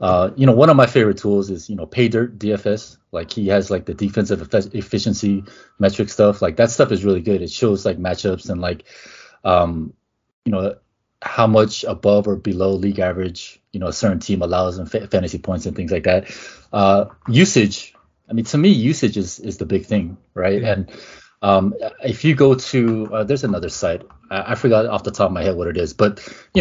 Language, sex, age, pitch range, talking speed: English, male, 20-39, 95-120 Hz, 220 wpm